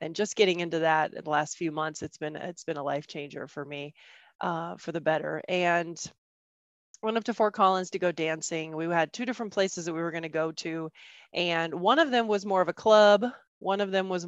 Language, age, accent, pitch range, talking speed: English, 20-39, American, 165-210 Hz, 240 wpm